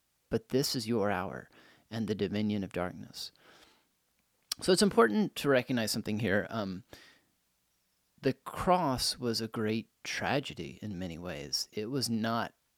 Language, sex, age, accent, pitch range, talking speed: English, male, 30-49, American, 105-140 Hz, 140 wpm